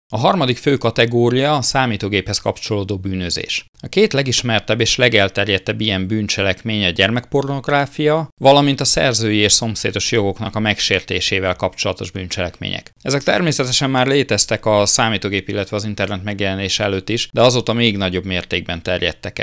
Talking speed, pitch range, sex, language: 140 wpm, 95-115 Hz, male, Hungarian